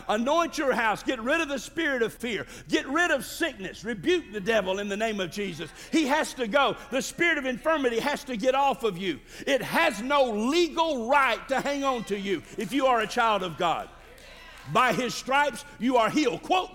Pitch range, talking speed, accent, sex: 235-305 Hz, 215 wpm, American, male